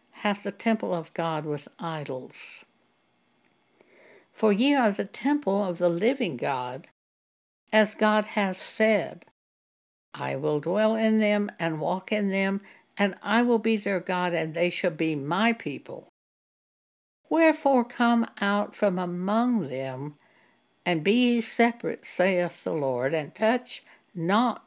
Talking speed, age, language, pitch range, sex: 140 wpm, 60-79, English, 160-225 Hz, female